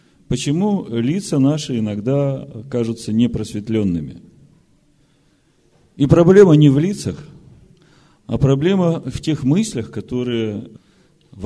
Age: 40-59